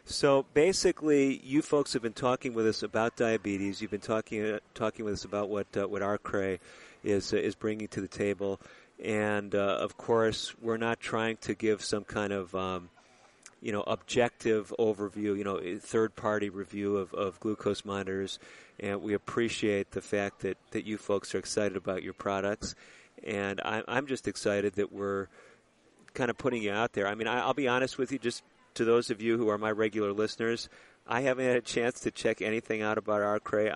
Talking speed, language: 200 wpm, English